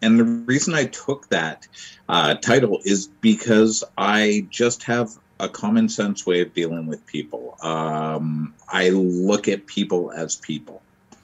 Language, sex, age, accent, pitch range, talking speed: English, male, 50-69, American, 85-110 Hz, 150 wpm